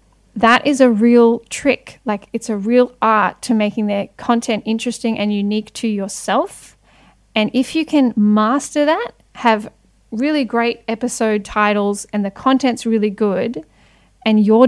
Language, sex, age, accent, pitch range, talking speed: English, female, 10-29, Australian, 210-235 Hz, 150 wpm